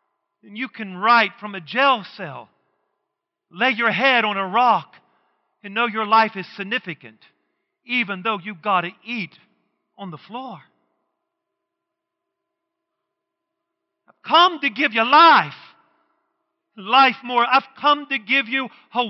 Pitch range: 215-290 Hz